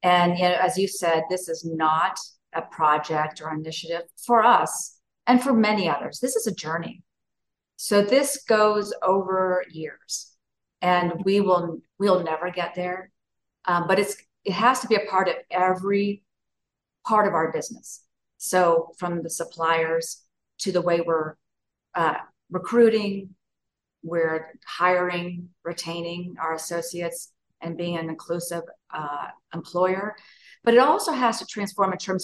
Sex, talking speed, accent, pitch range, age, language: female, 145 wpm, American, 165-205 Hz, 40-59, English